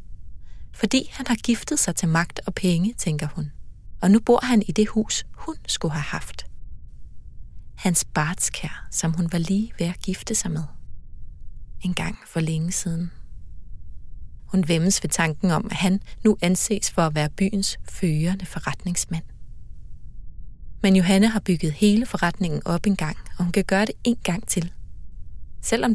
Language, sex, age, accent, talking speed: Danish, female, 30-49, native, 165 wpm